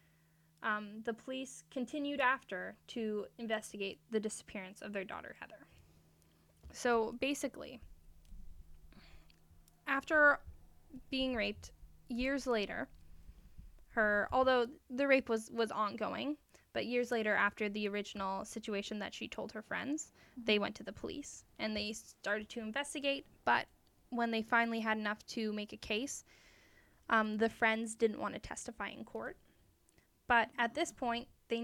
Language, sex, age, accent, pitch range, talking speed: English, female, 10-29, American, 205-245 Hz, 140 wpm